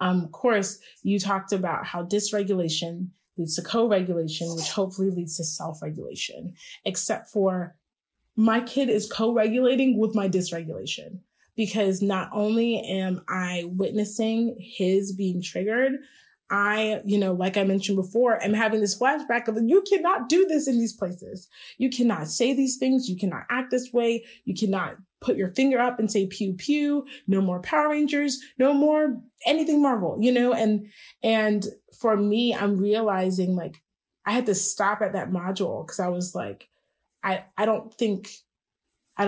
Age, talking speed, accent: 20-39, 160 wpm, American